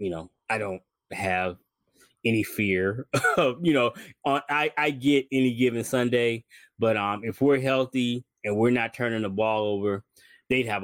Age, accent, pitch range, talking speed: 20-39, American, 110-150 Hz, 170 wpm